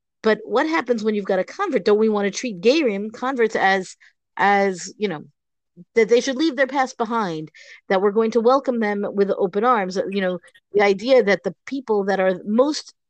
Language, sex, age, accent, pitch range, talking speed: English, female, 50-69, American, 185-240 Hz, 205 wpm